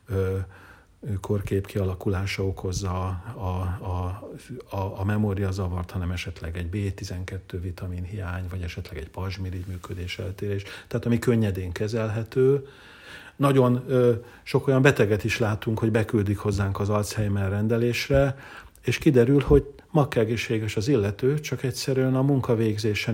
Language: Hungarian